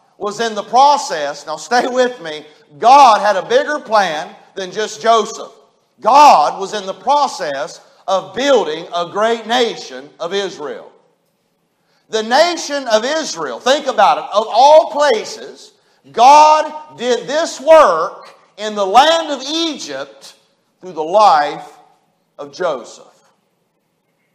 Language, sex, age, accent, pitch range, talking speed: English, male, 50-69, American, 190-290 Hz, 130 wpm